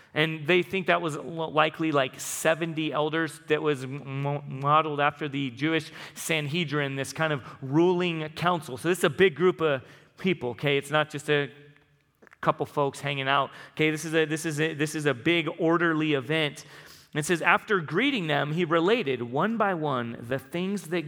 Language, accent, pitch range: English, American, 150-185 Hz